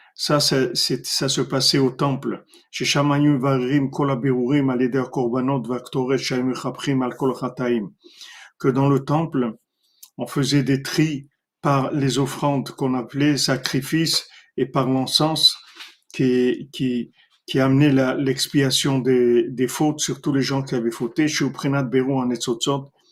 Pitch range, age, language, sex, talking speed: 130-150 Hz, 50-69, French, male, 115 wpm